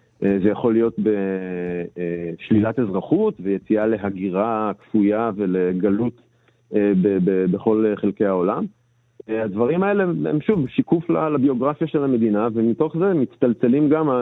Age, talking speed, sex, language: 40-59, 100 wpm, male, Hebrew